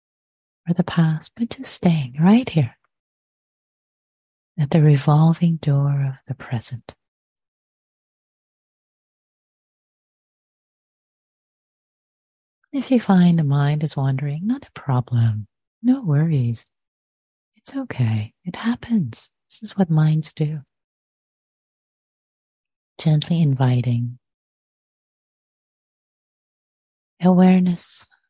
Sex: female